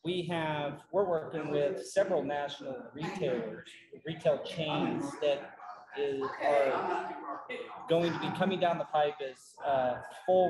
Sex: male